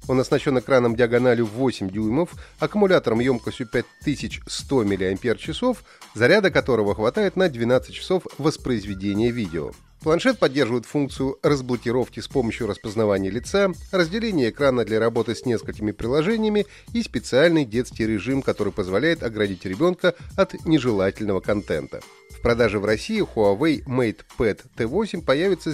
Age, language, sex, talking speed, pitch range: 30-49, Russian, male, 120 wpm, 110-165 Hz